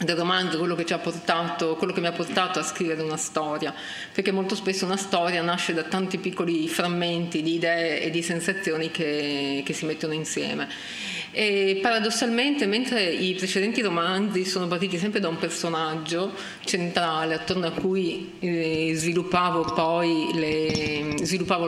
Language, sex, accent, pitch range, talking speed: Italian, female, native, 160-195 Hz, 155 wpm